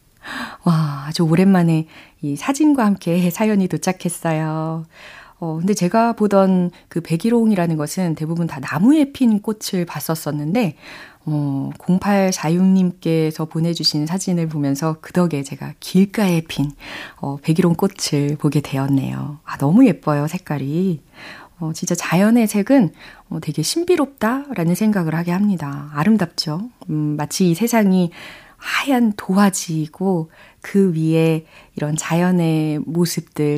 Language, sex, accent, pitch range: Korean, female, native, 155-205 Hz